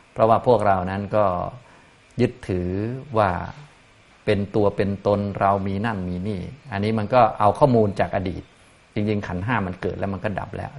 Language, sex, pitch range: Thai, male, 90-110 Hz